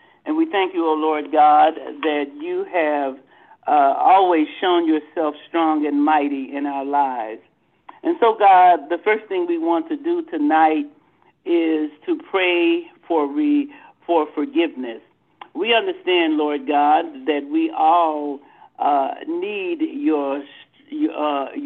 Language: English